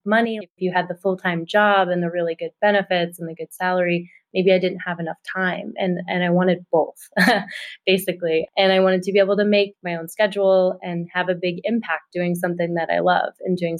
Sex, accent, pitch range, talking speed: female, American, 170-190 Hz, 220 wpm